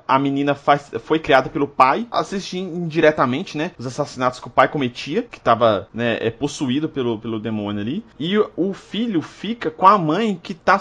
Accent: Brazilian